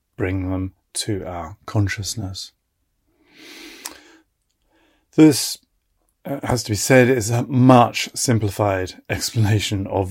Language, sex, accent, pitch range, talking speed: English, male, British, 100-115 Hz, 100 wpm